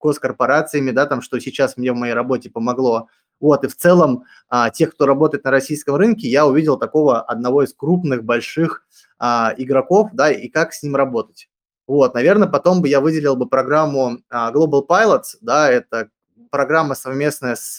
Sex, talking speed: male, 180 wpm